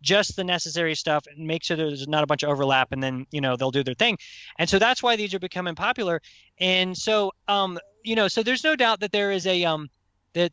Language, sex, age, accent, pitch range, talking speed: English, male, 20-39, American, 155-200 Hz, 250 wpm